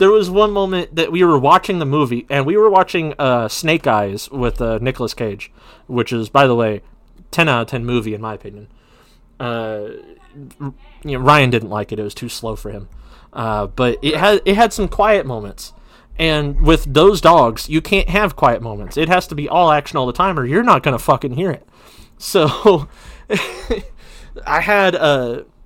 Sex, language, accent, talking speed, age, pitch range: male, English, American, 190 wpm, 30-49, 125-185 Hz